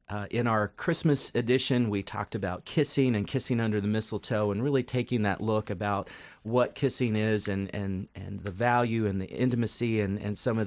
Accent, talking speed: American, 195 wpm